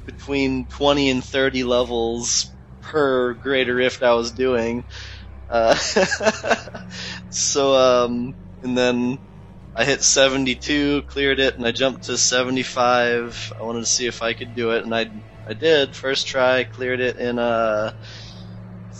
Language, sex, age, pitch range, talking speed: English, male, 20-39, 105-125 Hz, 140 wpm